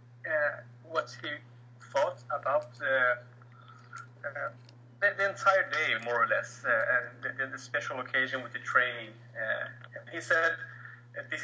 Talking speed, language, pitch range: 140 wpm, English, 120-135 Hz